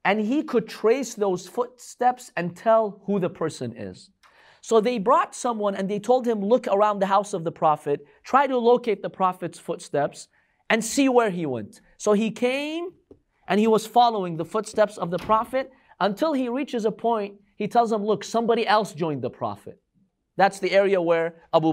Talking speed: 190 wpm